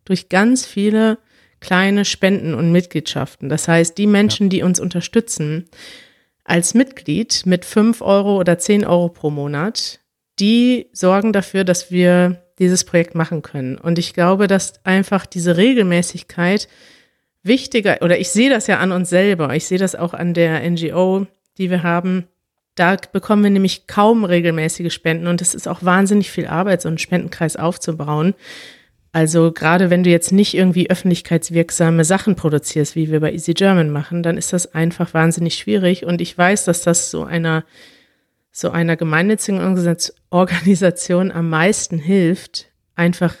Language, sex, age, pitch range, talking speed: German, female, 50-69, 170-195 Hz, 160 wpm